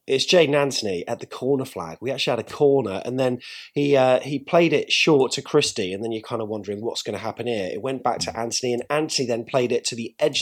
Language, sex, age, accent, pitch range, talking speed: English, male, 30-49, British, 125-160 Hz, 265 wpm